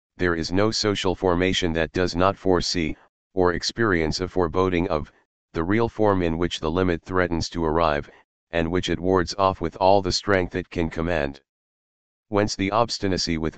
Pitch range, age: 80-95 Hz, 40-59